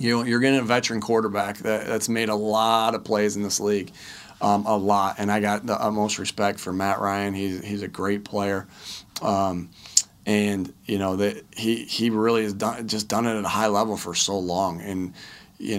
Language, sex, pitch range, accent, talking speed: English, male, 100-110 Hz, American, 205 wpm